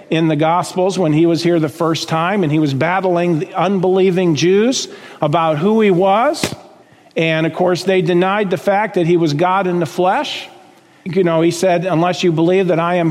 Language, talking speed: English, 205 wpm